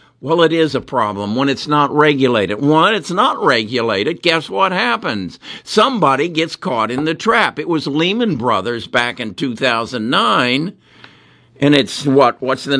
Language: English